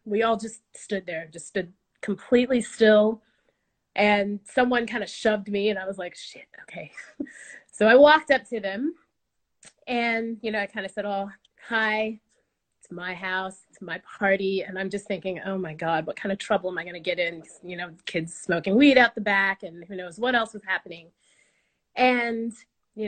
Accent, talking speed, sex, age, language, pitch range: American, 200 wpm, female, 30-49, English, 190-250 Hz